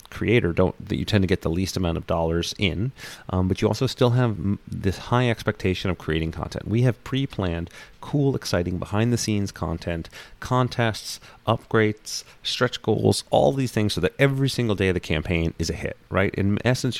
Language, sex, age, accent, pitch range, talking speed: English, male, 30-49, American, 85-110 Hz, 185 wpm